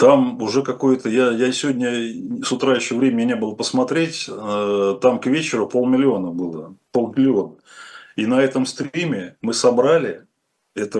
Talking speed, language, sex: 140 wpm, Russian, male